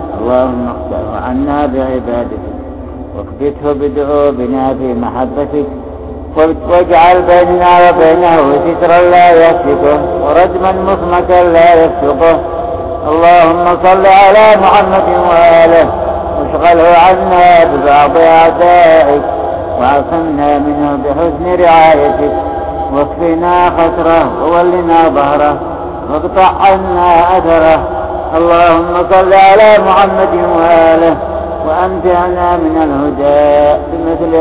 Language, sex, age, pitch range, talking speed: Arabic, male, 60-79, 130-170 Hz, 85 wpm